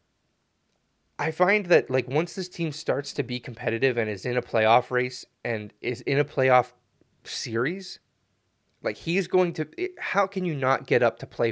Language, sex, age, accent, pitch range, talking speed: English, male, 20-39, American, 120-155 Hz, 190 wpm